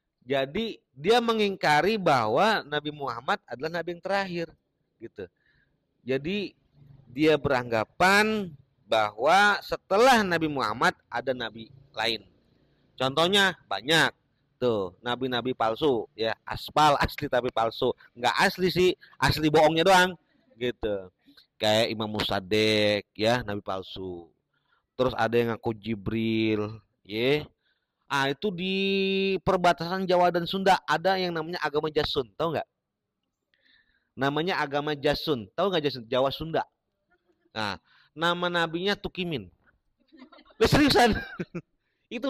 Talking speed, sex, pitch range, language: 110 wpm, male, 120-190 Hz, Indonesian